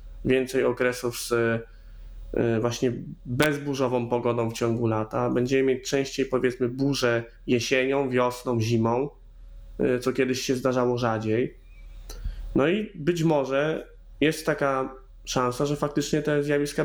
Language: Polish